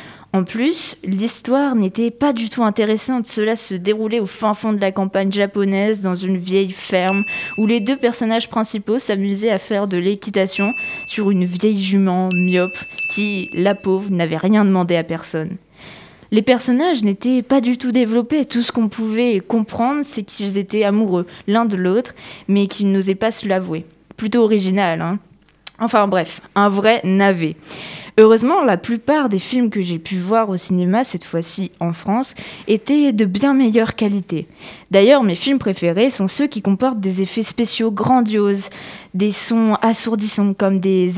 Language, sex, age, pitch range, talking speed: French, female, 20-39, 185-225 Hz, 170 wpm